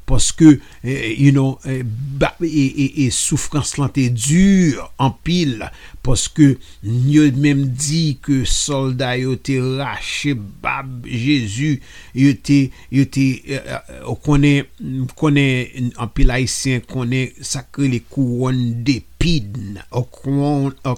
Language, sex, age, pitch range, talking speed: English, male, 60-79, 130-170 Hz, 120 wpm